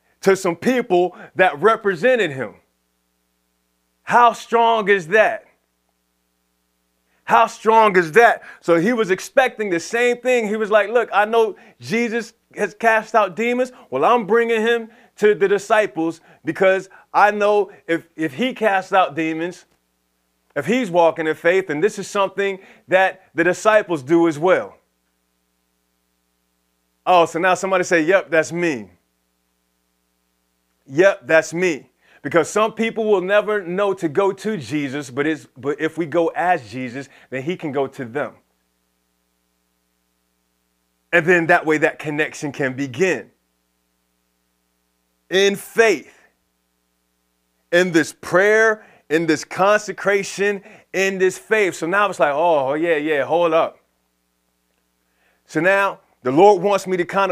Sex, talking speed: male, 140 wpm